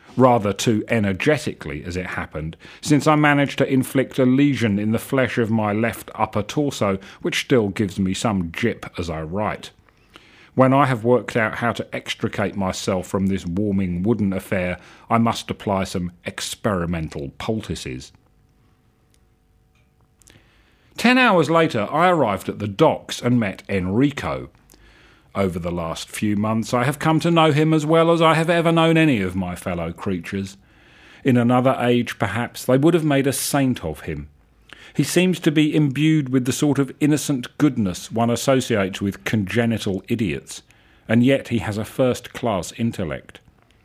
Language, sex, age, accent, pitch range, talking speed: English, male, 40-59, British, 95-135 Hz, 165 wpm